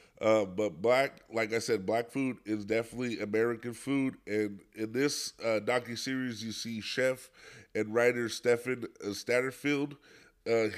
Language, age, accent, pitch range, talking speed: English, 20-39, American, 105-125 Hz, 145 wpm